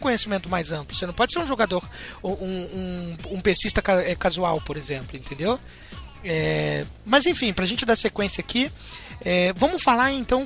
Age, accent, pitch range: 20-39, Brazilian, 170-210 Hz